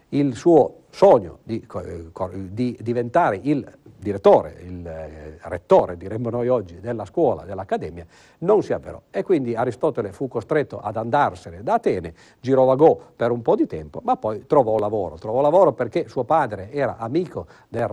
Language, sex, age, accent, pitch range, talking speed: Italian, male, 50-69, native, 100-135 Hz, 155 wpm